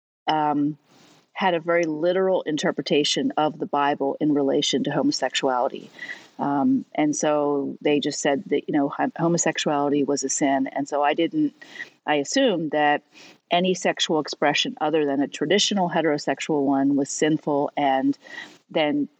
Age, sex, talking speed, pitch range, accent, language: 40-59, female, 145 wpm, 150-180 Hz, American, English